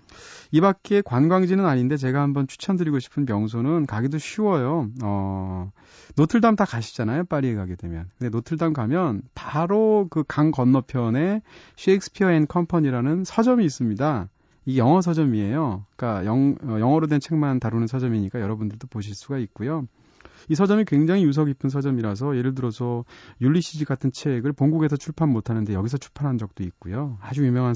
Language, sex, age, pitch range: Korean, male, 30-49, 110-160 Hz